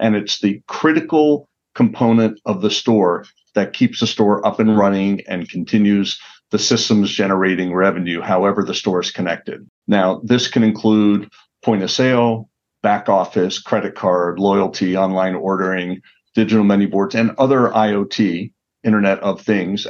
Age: 50-69